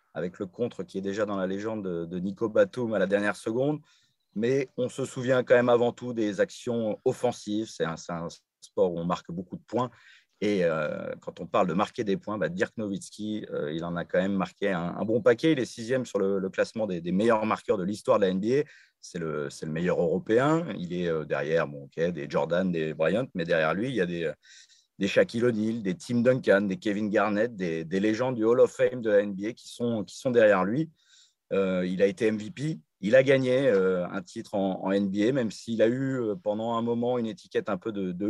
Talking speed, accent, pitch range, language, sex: 240 wpm, French, 100-130 Hz, French, male